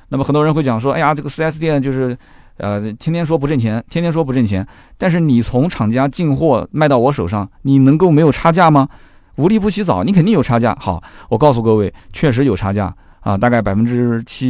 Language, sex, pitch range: Chinese, male, 100-140 Hz